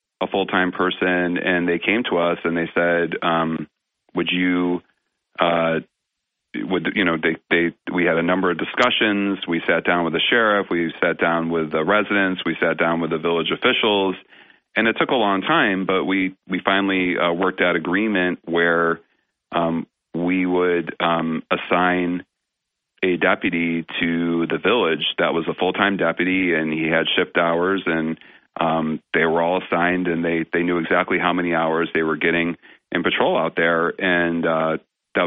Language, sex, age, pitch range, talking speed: English, male, 30-49, 85-90 Hz, 175 wpm